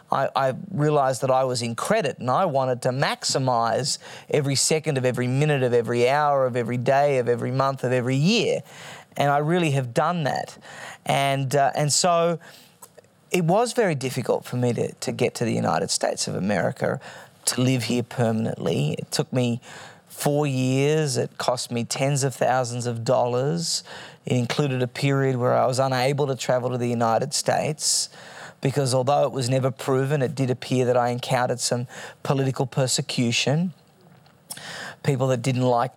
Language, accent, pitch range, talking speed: English, Australian, 125-155 Hz, 175 wpm